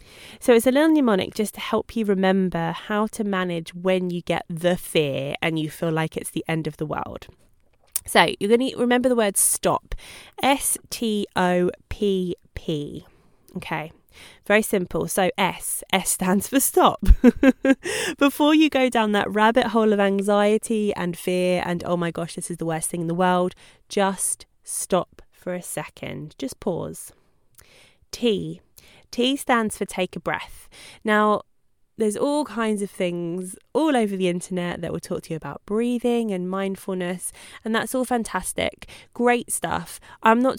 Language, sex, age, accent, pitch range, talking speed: English, female, 20-39, British, 180-230 Hz, 165 wpm